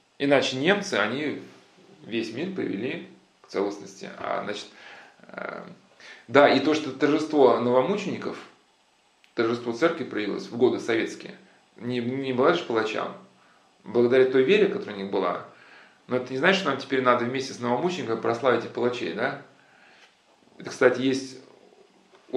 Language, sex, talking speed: Russian, male, 140 wpm